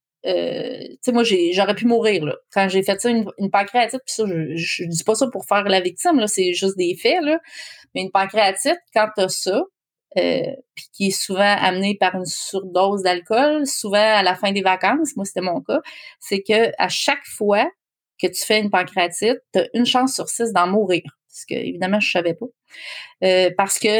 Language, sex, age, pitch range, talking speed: English, female, 30-49, 185-235 Hz, 210 wpm